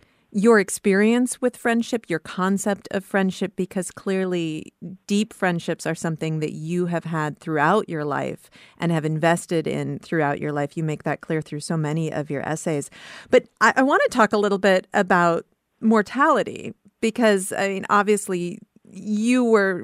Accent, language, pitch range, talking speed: American, English, 165-220 Hz, 165 wpm